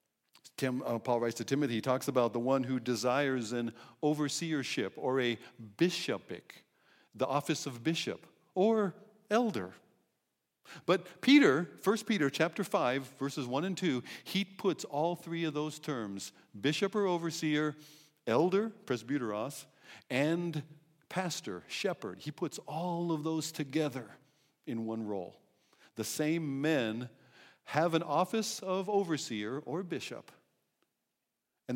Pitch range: 125-170 Hz